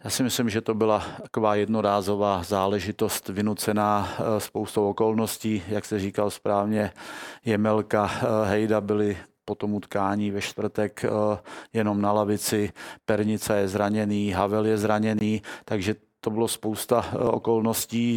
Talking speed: 125 wpm